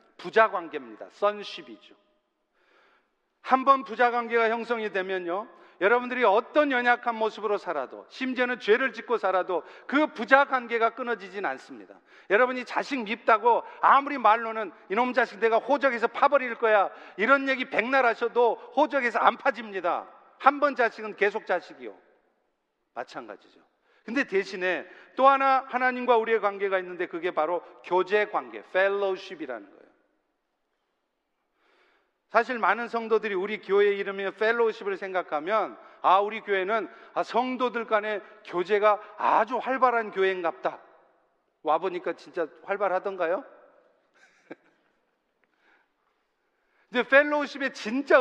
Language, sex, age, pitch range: Korean, male, 40-59, 195-250 Hz